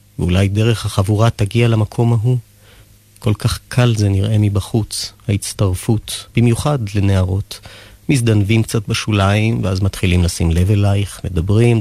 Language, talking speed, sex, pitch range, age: Hebrew, 120 wpm, male, 105-120 Hz, 30-49